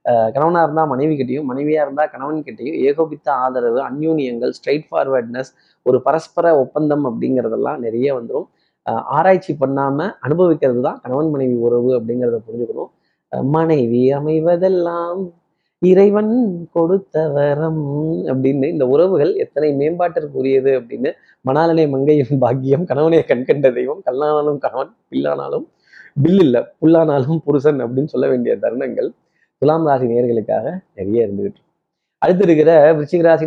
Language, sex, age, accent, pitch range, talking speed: Tamil, male, 20-39, native, 130-170 Hz, 115 wpm